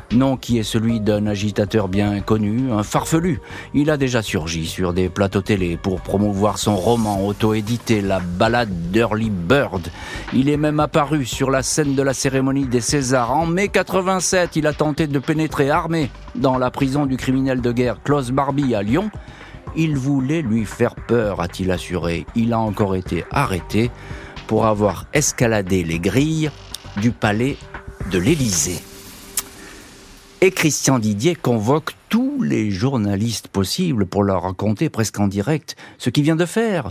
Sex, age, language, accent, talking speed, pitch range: male, 50-69, French, French, 160 wpm, 100-140 Hz